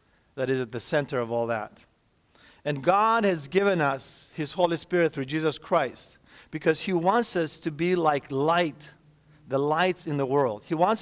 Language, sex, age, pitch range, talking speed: English, male, 50-69, 140-175 Hz, 185 wpm